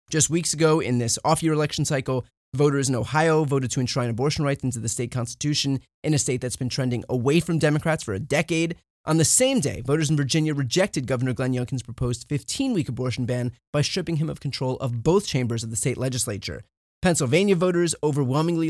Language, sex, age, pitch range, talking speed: English, male, 30-49, 125-165 Hz, 205 wpm